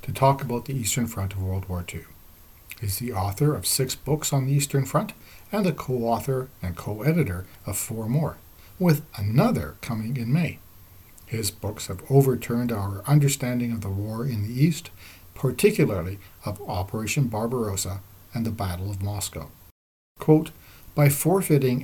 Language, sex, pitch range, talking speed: English, male, 95-130 Hz, 155 wpm